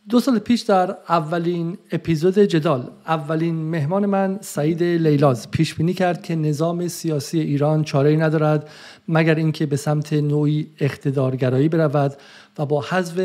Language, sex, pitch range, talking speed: Persian, male, 140-165 Hz, 140 wpm